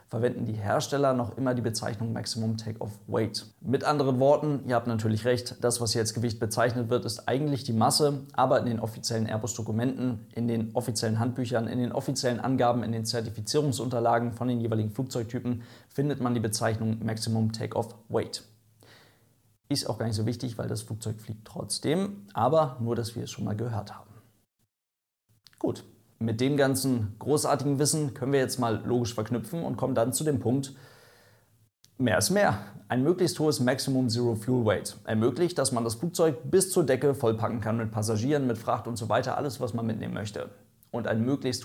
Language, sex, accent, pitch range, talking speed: German, male, German, 110-130 Hz, 185 wpm